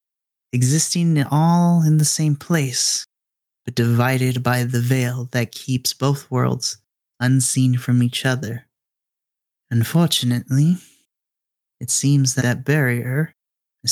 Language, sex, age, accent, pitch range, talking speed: English, male, 30-49, American, 120-135 Hz, 110 wpm